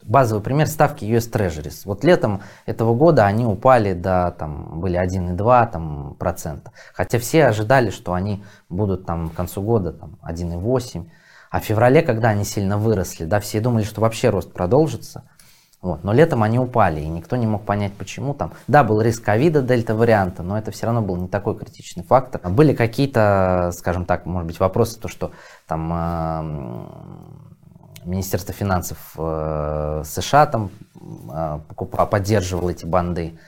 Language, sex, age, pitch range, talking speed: Russian, male, 20-39, 90-125 Hz, 155 wpm